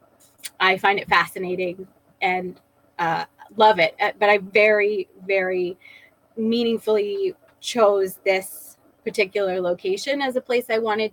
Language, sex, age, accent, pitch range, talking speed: English, female, 20-39, American, 185-220 Hz, 120 wpm